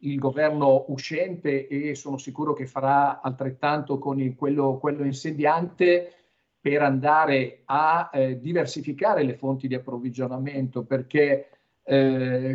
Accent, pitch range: native, 135-155 Hz